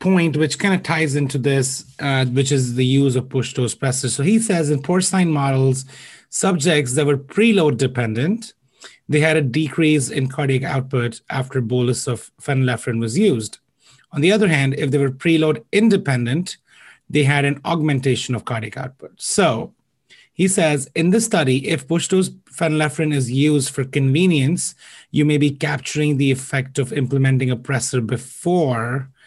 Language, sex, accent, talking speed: English, male, Indian, 165 wpm